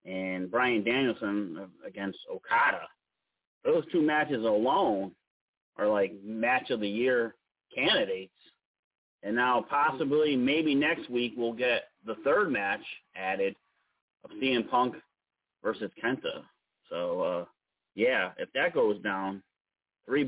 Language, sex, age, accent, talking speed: English, male, 30-49, American, 120 wpm